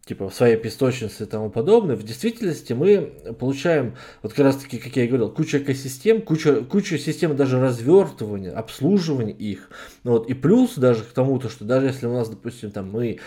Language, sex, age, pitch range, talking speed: Russian, male, 20-39, 115-160 Hz, 200 wpm